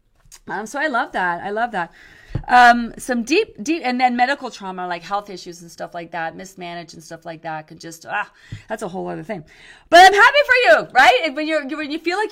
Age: 30-49